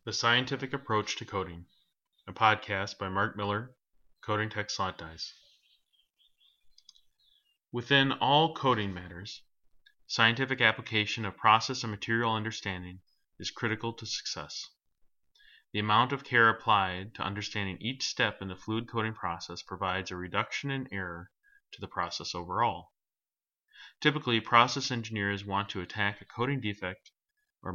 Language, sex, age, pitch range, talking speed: English, male, 30-49, 95-125 Hz, 135 wpm